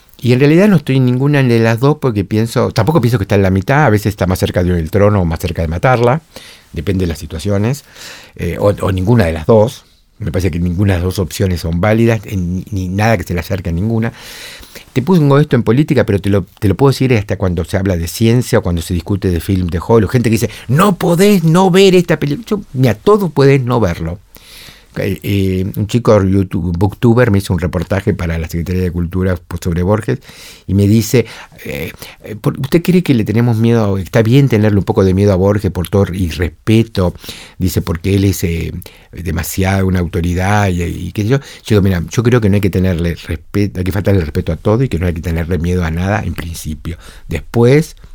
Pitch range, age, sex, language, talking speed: 90-115 Hz, 50-69, male, Spanish, 230 wpm